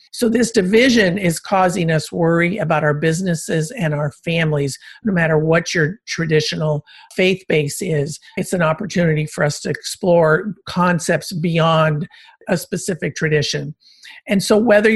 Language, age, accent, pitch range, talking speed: English, 50-69, American, 160-205 Hz, 145 wpm